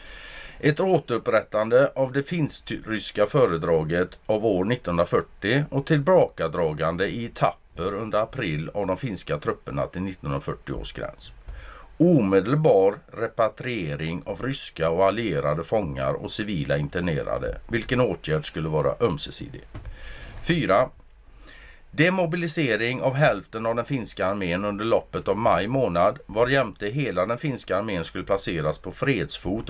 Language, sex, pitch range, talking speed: Swedish, male, 85-140 Hz, 125 wpm